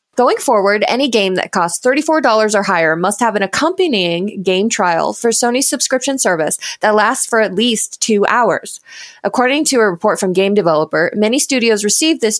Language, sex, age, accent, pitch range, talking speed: English, female, 20-39, American, 195-260 Hz, 180 wpm